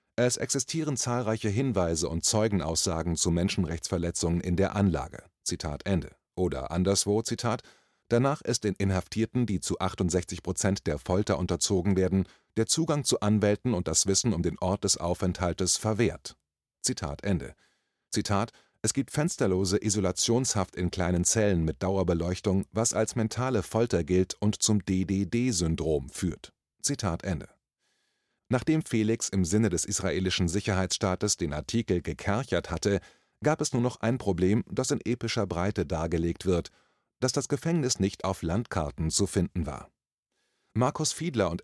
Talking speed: 145 wpm